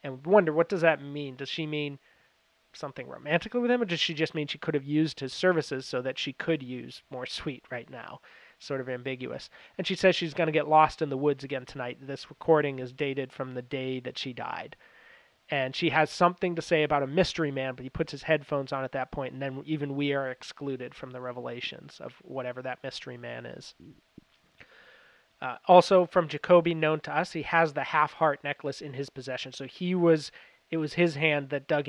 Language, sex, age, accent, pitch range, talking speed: English, male, 30-49, American, 135-160 Hz, 220 wpm